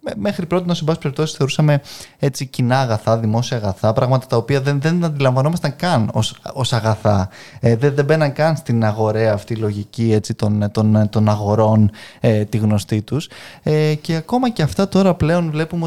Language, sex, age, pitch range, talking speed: Greek, male, 20-39, 110-145 Hz, 170 wpm